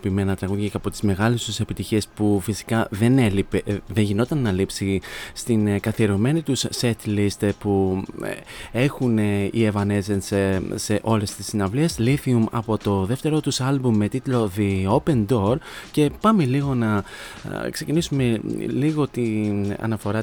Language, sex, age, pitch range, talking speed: Greek, male, 30-49, 100-130 Hz, 145 wpm